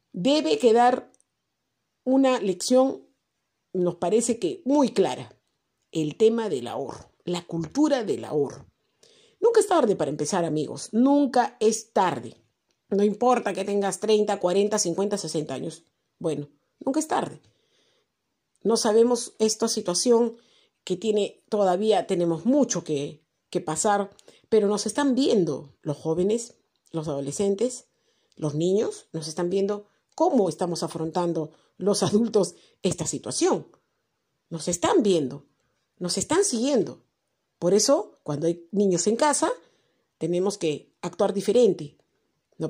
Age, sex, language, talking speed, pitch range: 50-69, female, Spanish, 125 wpm, 165-240 Hz